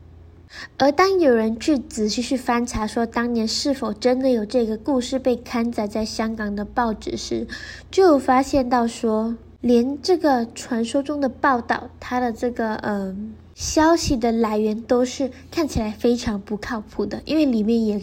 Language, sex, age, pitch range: Chinese, female, 20-39, 220-265 Hz